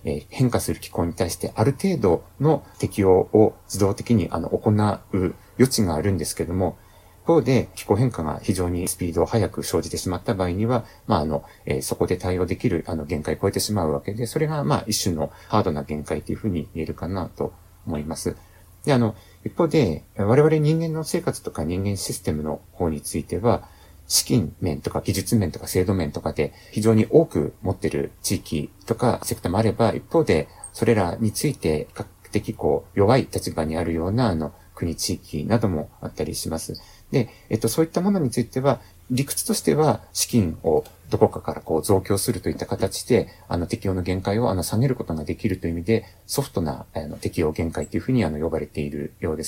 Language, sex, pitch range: Japanese, male, 85-115 Hz